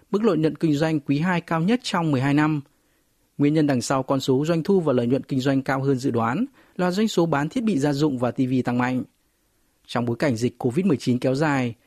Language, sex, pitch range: Vietnamese, male, 125-165 Hz